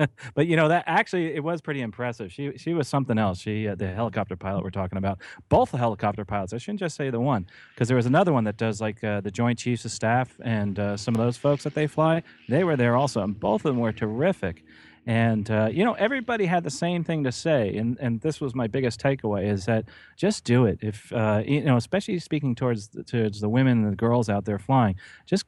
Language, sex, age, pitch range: English, male, 30-49, 110-145 Hz